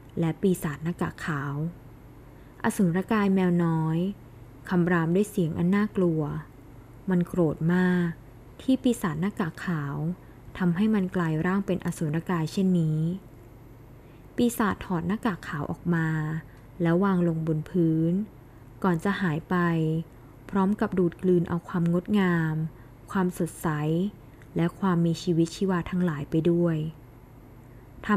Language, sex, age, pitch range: Thai, female, 20-39, 150-185 Hz